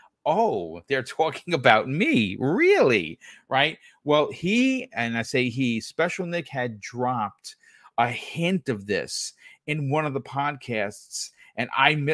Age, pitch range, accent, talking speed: 40-59, 115-160 Hz, American, 145 wpm